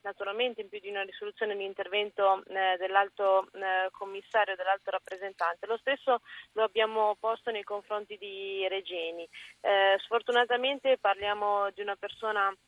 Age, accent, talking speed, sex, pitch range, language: 20-39, native, 130 wpm, female, 200-235 Hz, Italian